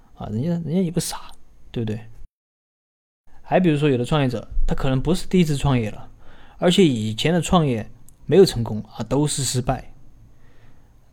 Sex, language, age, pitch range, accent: male, Chinese, 20-39, 115-150 Hz, native